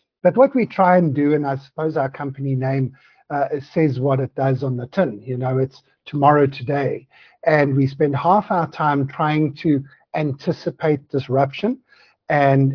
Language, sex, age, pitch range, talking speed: English, male, 50-69, 135-155 Hz, 170 wpm